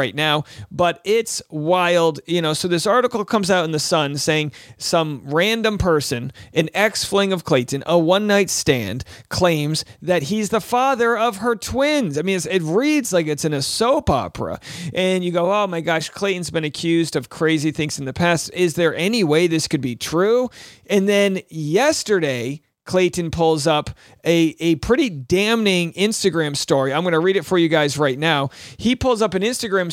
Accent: American